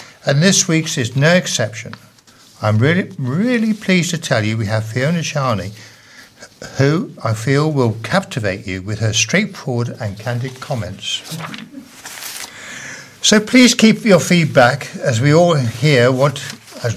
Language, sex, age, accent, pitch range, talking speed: English, male, 60-79, British, 115-155 Hz, 140 wpm